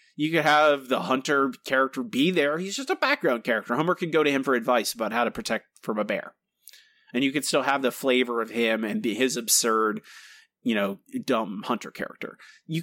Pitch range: 125-180 Hz